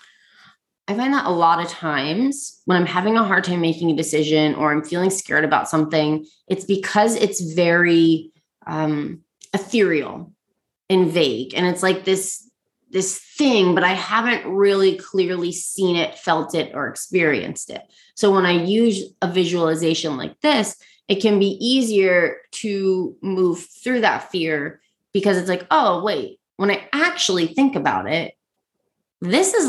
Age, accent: 20-39, American